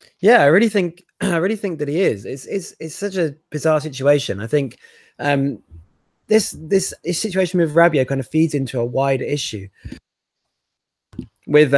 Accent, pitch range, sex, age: British, 125-155 Hz, male, 20-39